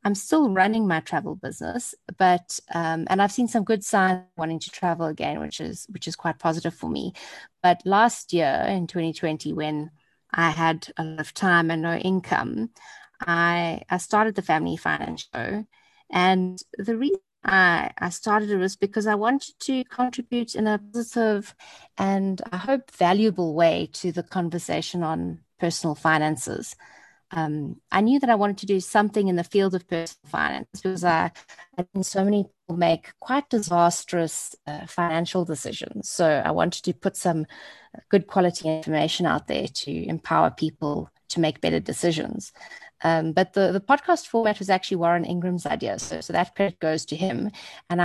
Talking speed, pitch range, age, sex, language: 170 wpm, 165-205 Hz, 30-49, female, English